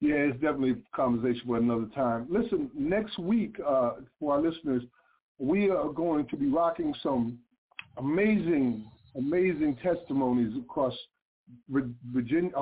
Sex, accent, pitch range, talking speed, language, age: male, American, 130-185 Hz, 130 wpm, English, 50-69